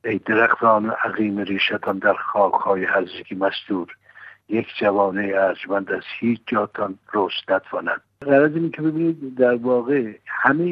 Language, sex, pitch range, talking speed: Persian, male, 100-120 Hz, 130 wpm